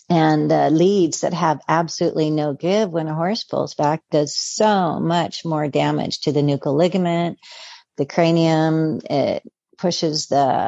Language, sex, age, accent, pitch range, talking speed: English, female, 50-69, American, 155-180 Hz, 150 wpm